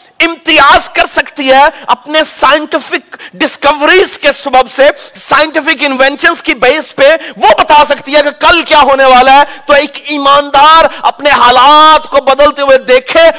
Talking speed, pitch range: 150 wpm, 265-325 Hz